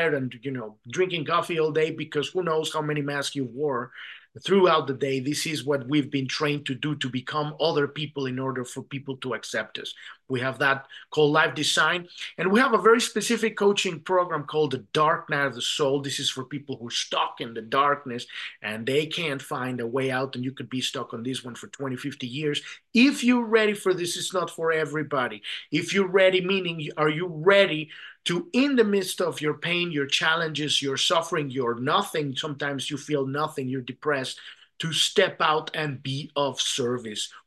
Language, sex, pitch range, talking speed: English, male, 135-175 Hz, 205 wpm